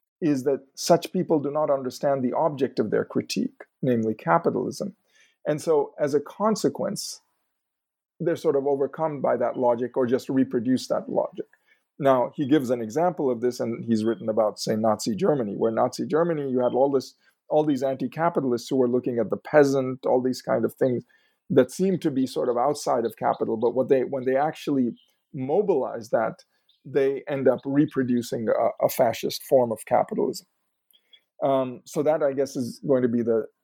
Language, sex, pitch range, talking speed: English, male, 125-160 Hz, 185 wpm